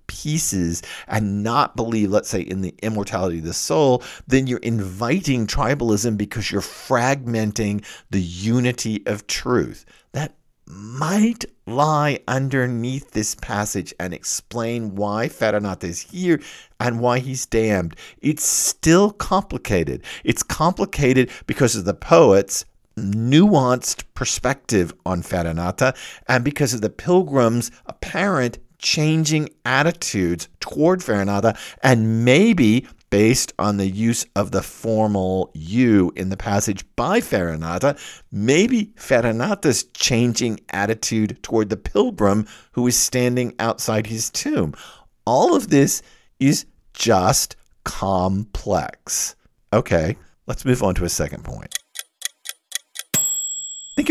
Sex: male